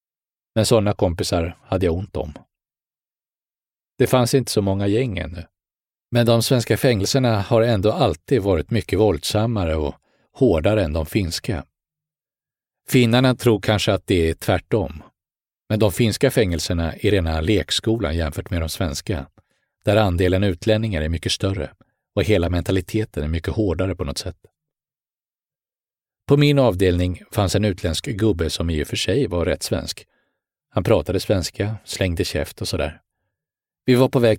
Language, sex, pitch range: English, male, 90-115 Hz